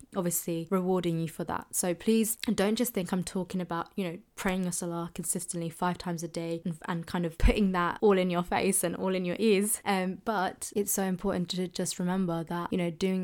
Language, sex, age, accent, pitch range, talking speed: English, female, 20-39, British, 175-205 Hz, 225 wpm